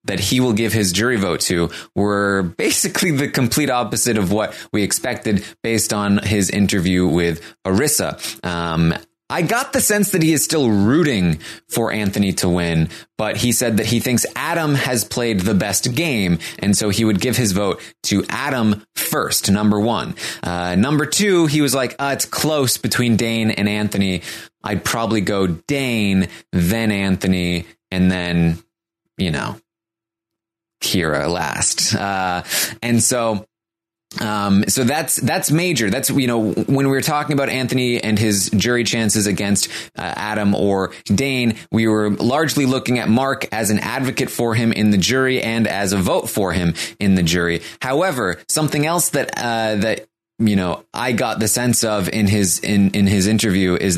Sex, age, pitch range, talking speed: male, 20-39, 100-125 Hz, 175 wpm